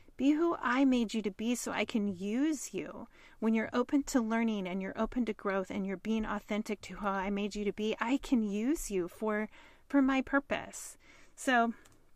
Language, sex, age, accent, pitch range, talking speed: English, female, 30-49, American, 195-240 Hz, 205 wpm